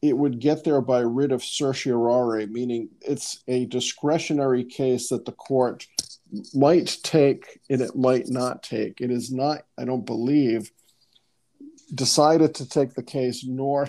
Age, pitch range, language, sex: 50-69, 120-140 Hz, English, male